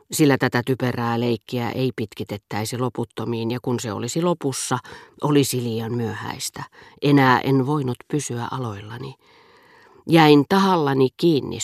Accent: native